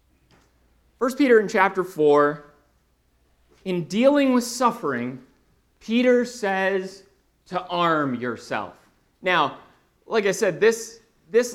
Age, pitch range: 30-49, 120-195 Hz